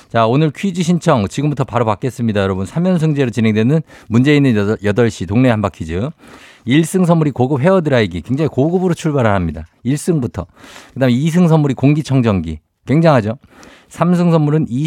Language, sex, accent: Korean, male, native